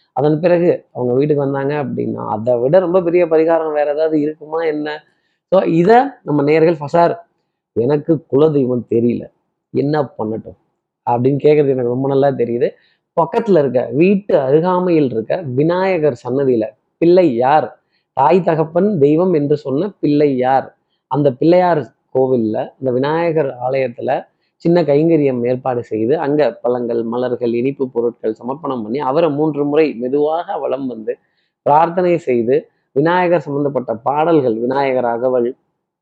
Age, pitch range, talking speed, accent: 20-39, 130-165 Hz, 130 wpm, native